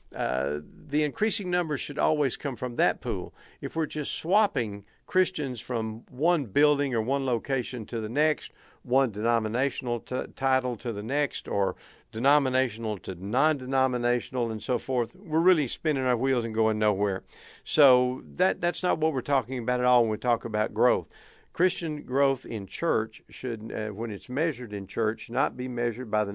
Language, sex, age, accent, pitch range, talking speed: English, male, 60-79, American, 110-140 Hz, 175 wpm